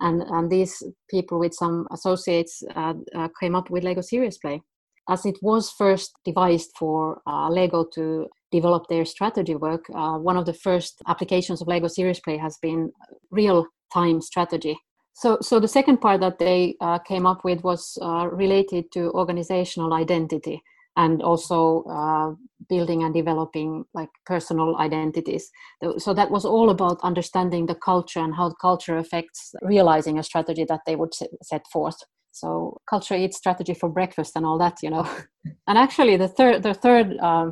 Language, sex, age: English, female, 30-49